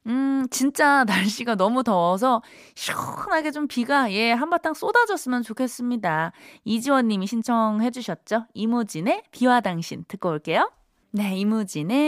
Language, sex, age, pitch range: Korean, female, 20-39, 190-270 Hz